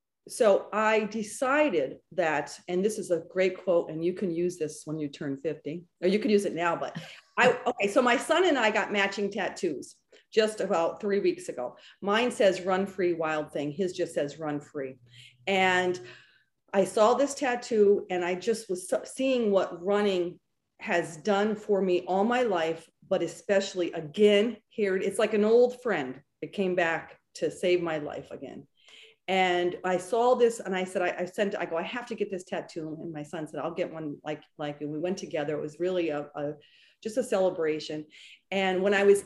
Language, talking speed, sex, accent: English, 200 wpm, female, American